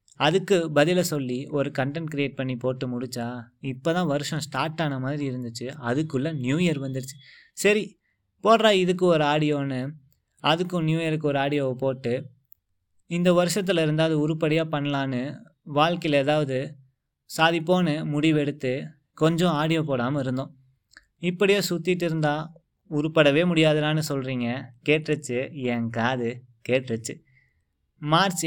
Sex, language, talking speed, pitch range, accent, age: male, Tamil, 115 wpm, 130-165 Hz, native, 20-39